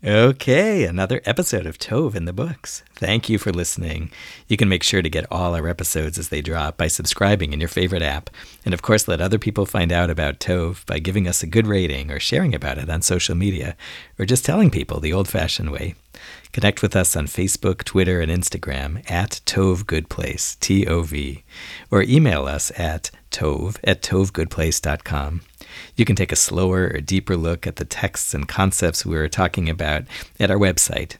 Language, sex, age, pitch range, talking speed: English, male, 50-69, 80-95 Hz, 190 wpm